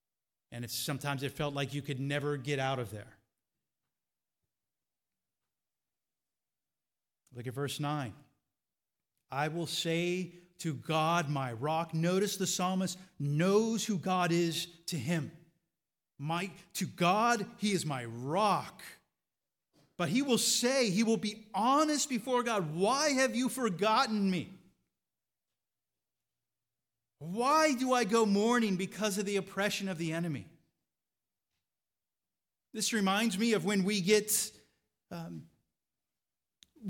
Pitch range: 165-220 Hz